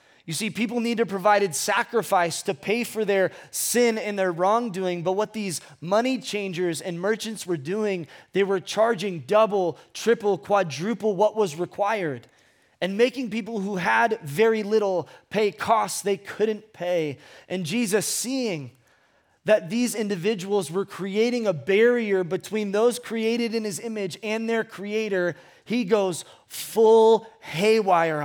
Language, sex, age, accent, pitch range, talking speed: English, male, 20-39, American, 160-215 Hz, 145 wpm